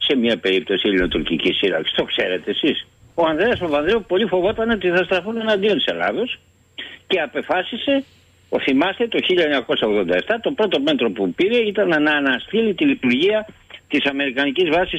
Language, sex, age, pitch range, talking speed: English, male, 60-79, 155-250 Hz, 150 wpm